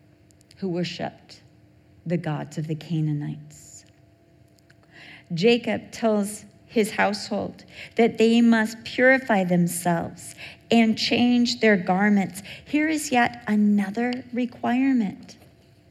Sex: female